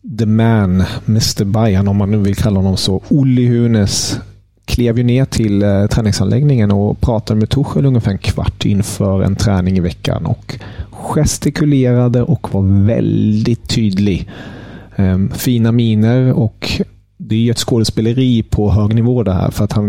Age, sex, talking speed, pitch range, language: 30-49, male, 155 wpm, 95-115 Hz, Swedish